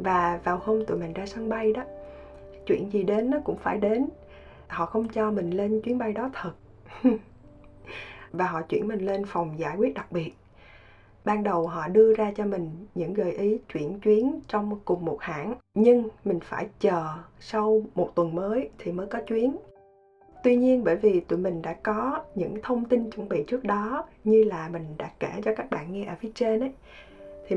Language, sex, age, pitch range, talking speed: Vietnamese, female, 20-39, 170-220 Hz, 200 wpm